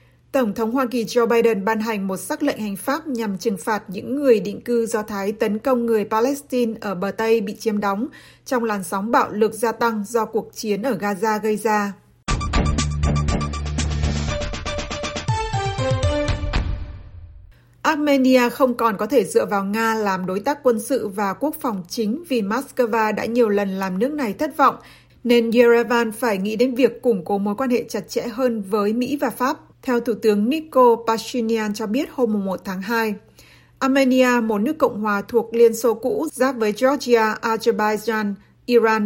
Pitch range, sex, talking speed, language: 205-245 Hz, female, 180 wpm, Vietnamese